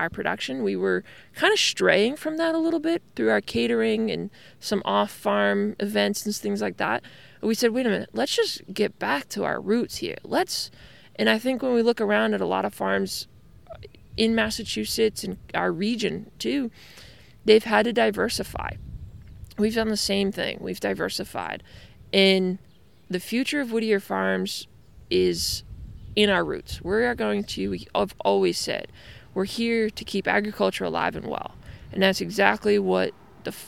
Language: English